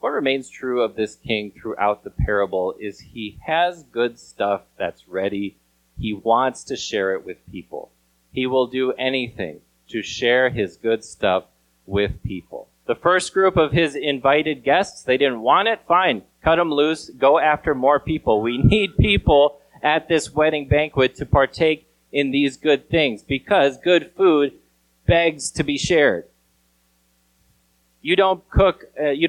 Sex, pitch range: male, 105-155 Hz